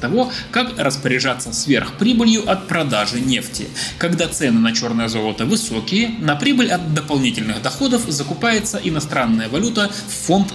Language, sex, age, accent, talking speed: Russian, male, 20-39, native, 130 wpm